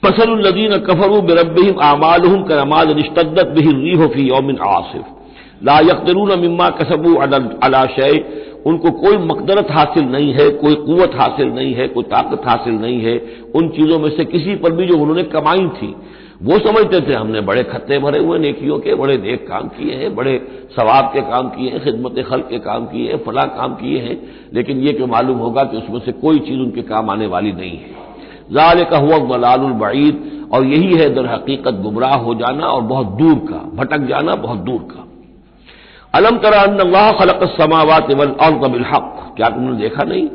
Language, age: Hindi, 50-69